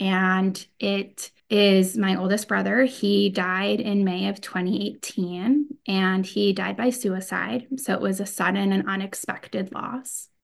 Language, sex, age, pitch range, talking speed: English, female, 20-39, 190-235 Hz, 145 wpm